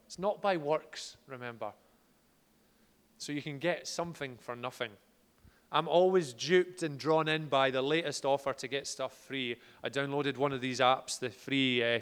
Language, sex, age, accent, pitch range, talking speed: English, male, 30-49, British, 125-150 Hz, 175 wpm